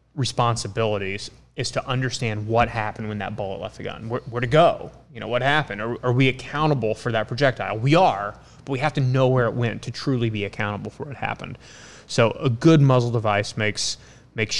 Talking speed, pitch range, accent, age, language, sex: 210 wpm, 105-125 Hz, American, 20-39, English, male